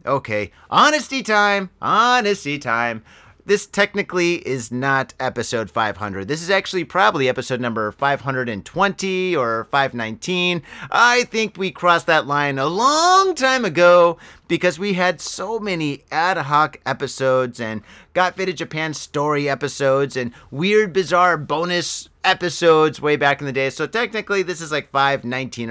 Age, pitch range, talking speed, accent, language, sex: 30-49, 125-200 Hz, 140 wpm, American, English, male